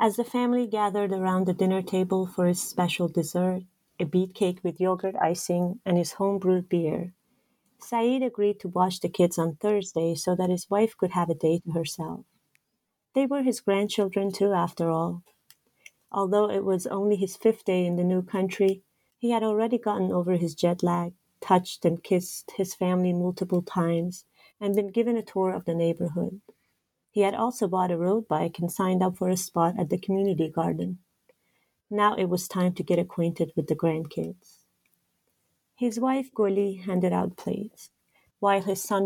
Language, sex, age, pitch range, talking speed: English, female, 30-49, 180-205 Hz, 180 wpm